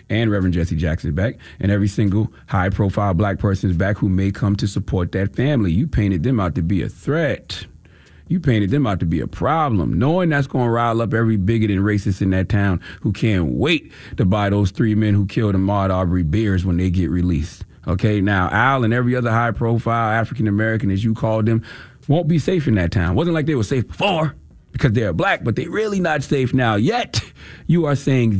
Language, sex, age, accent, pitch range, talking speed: English, male, 30-49, American, 95-130 Hz, 220 wpm